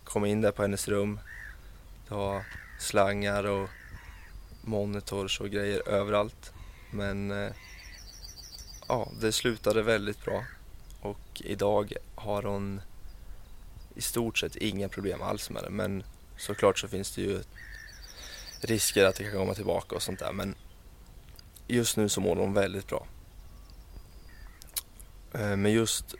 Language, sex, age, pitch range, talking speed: Swedish, male, 20-39, 90-105 Hz, 135 wpm